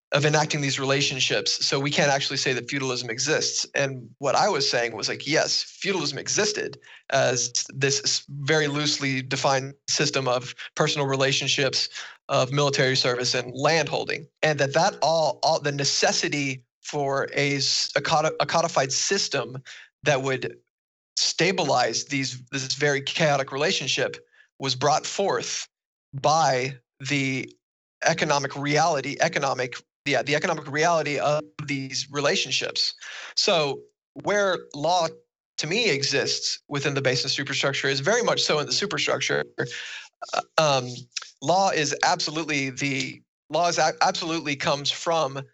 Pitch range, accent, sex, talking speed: 135-150 Hz, American, male, 130 wpm